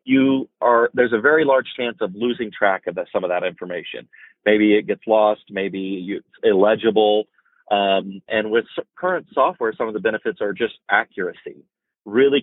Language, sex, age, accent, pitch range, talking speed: English, male, 30-49, American, 100-120 Hz, 180 wpm